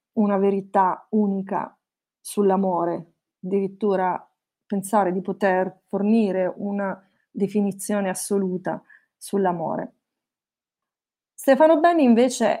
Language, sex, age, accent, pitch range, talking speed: Italian, female, 30-49, native, 190-225 Hz, 75 wpm